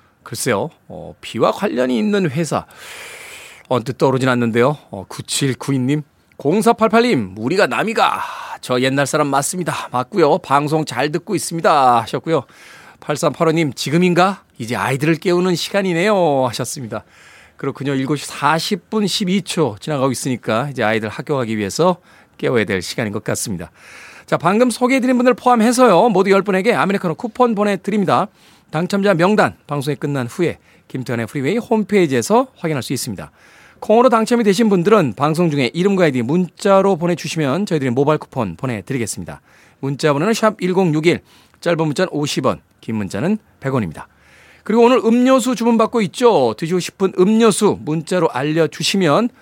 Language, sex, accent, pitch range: Korean, male, native, 140-210 Hz